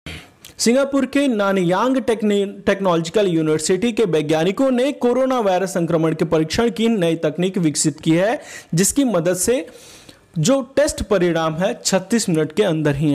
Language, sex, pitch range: Hindi, male, 165-225 Hz